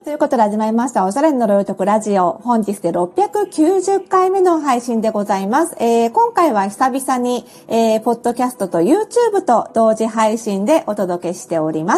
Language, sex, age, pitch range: Japanese, female, 40-59, 205-310 Hz